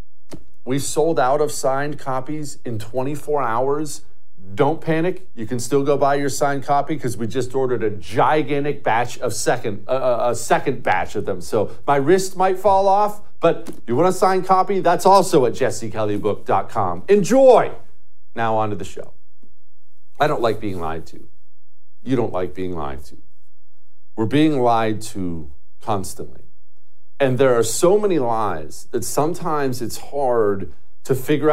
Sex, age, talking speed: male, 40-59, 160 wpm